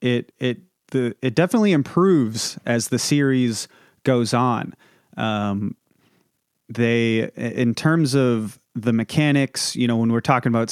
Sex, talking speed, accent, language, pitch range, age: male, 135 wpm, American, English, 115-135 Hz, 30-49